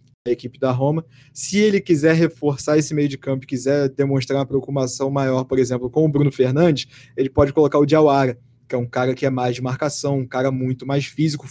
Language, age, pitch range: Portuguese, 20-39, 130-155 Hz